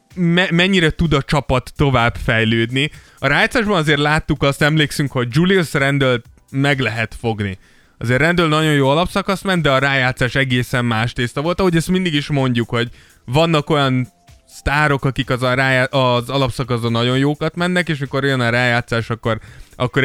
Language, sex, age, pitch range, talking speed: Hungarian, male, 20-39, 120-150 Hz, 170 wpm